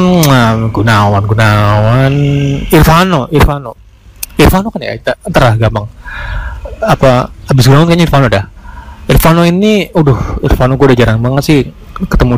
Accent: native